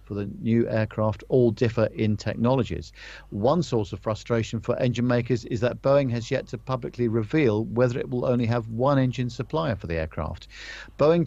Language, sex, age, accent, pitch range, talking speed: English, male, 50-69, British, 105-130 Hz, 185 wpm